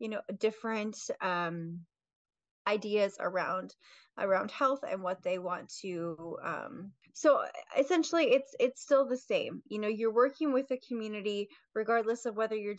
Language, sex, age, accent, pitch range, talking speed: English, female, 20-39, American, 185-230 Hz, 150 wpm